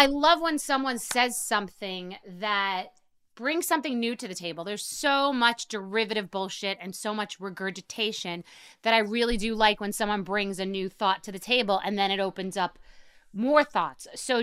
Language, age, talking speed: English, 30-49, 185 wpm